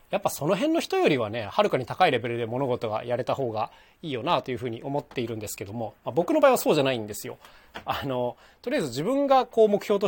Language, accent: Japanese, native